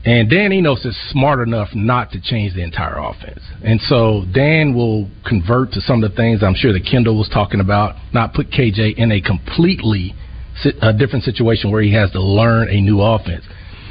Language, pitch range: English, 100-135 Hz